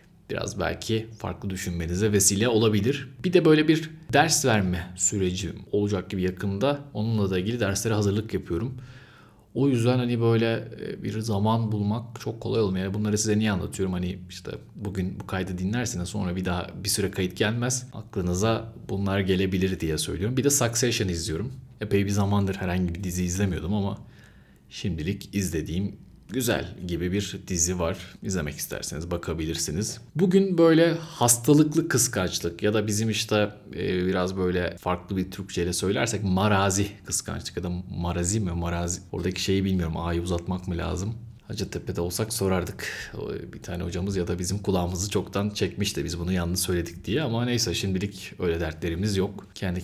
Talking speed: 160 wpm